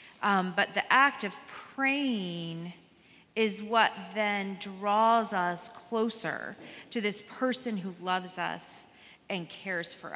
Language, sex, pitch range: English, female, 195-235 Hz